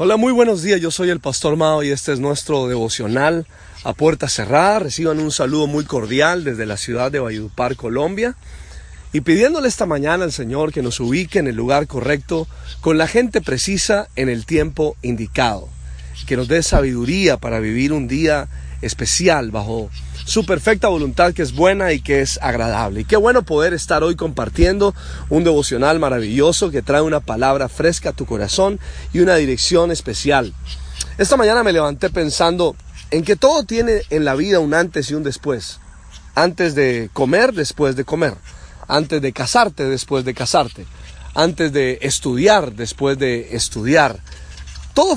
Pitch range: 120-165 Hz